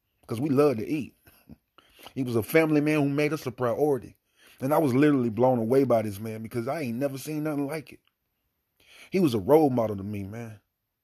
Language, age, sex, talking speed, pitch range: English, 30-49, male, 215 wpm, 120-155 Hz